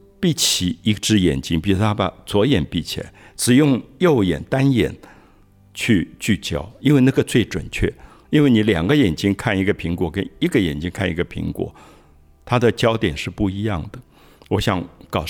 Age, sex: 50-69, male